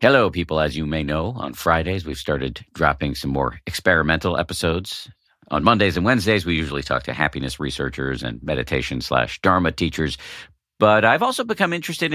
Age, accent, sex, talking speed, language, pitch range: 50-69, American, male, 175 wpm, English, 80-115 Hz